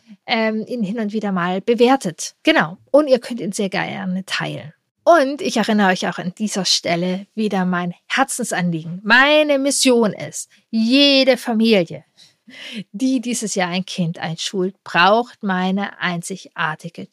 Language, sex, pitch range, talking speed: German, female, 185-245 Hz, 135 wpm